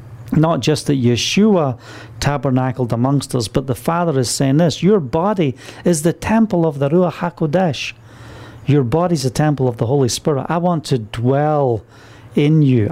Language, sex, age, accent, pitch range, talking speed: English, male, 40-59, British, 125-165 Hz, 170 wpm